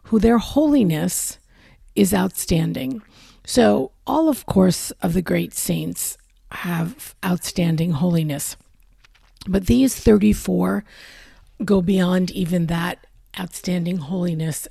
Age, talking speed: 50-69, 100 wpm